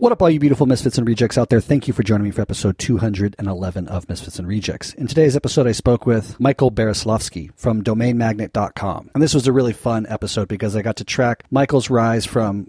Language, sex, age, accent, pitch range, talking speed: English, male, 30-49, American, 105-125 Hz, 220 wpm